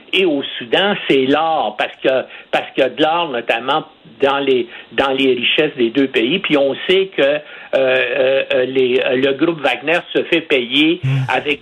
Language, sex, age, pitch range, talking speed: French, male, 60-79, 135-180 Hz, 165 wpm